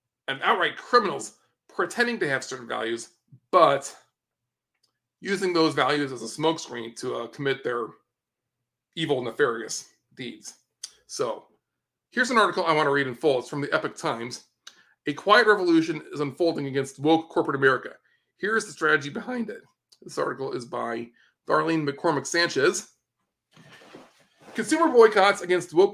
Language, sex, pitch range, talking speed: English, male, 140-185 Hz, 145 wpm